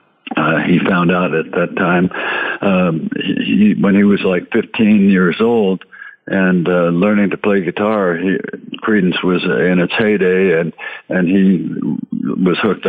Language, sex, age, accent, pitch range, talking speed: English, male, 60-79, American, 90-110 Hz, 160 wpm